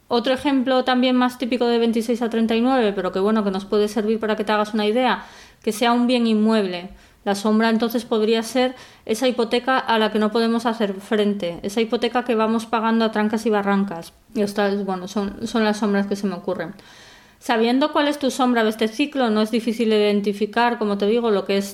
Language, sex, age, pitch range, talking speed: Spanish, female, 20-39, 200-240 Hz, 220 wpm